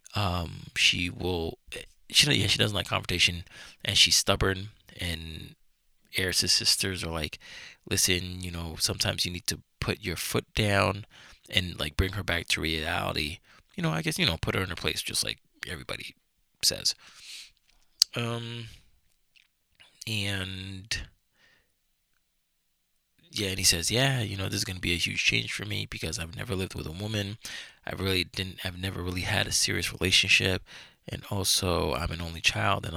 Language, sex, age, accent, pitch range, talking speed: English, male, 20-39, American, 85-105 Hz, 165 wpm